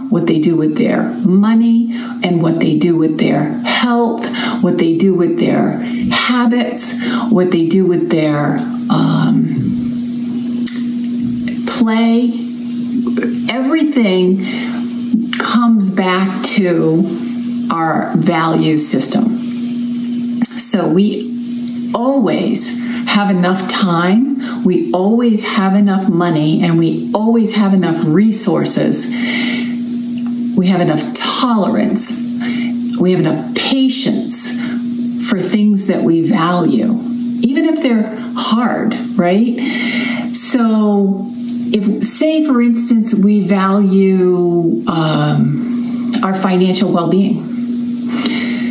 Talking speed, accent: 95 wpm, American